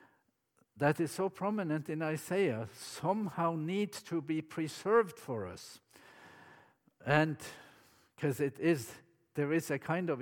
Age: 50-69